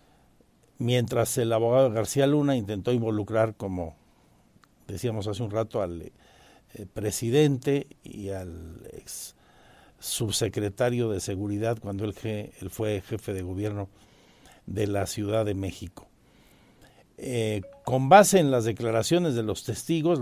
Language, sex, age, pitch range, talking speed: Spanish, male, 60-79, 105-145 Hz, 125 wpm